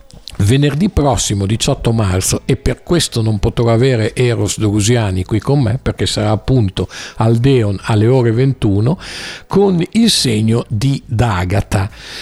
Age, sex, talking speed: 50-69, male, 140 wpm